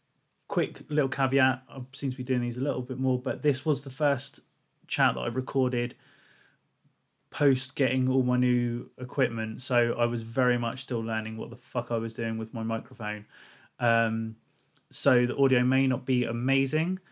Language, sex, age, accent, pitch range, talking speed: English, male, 20-39, British, 115-135 Hz, 180 wpm